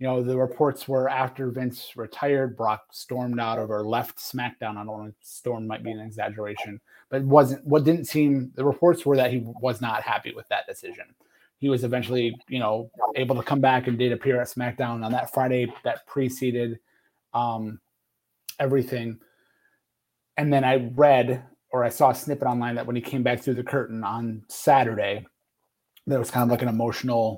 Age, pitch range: 30-49, 120-140 Hz